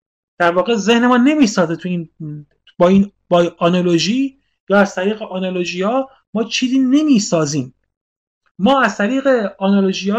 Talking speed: 130 wpm